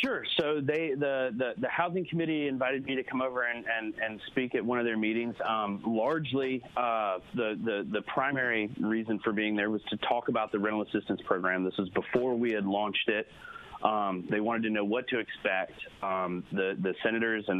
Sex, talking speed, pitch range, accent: male, 210 wpm, 100-125 Hz, American